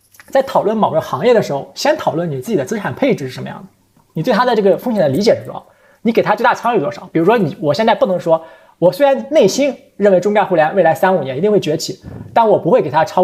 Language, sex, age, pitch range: Chinese, male, 20-39, 160-210 Hz